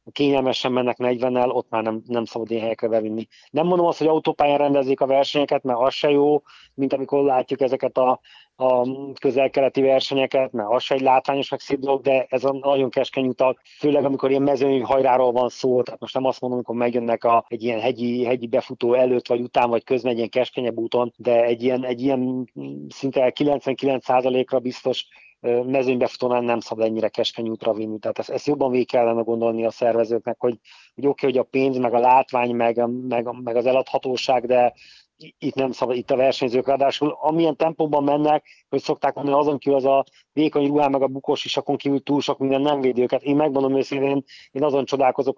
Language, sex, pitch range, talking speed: Hungarian, male, 120-140 Hz, 195 wpm